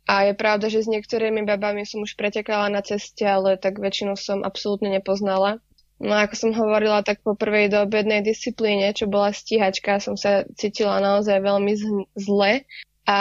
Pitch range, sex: 200-220 Hz, female